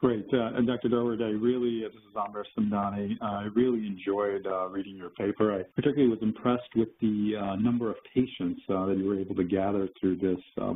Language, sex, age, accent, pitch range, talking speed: English, male, 50-69, American, 95-115 Hz, 225 wpm